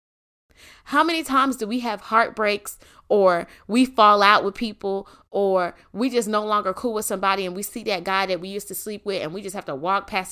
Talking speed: 225 wpm